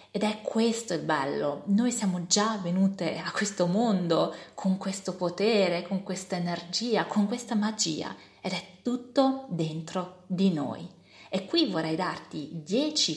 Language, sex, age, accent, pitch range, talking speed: Italian, female, 30-49, native, 170-210 Hz, 145 wpm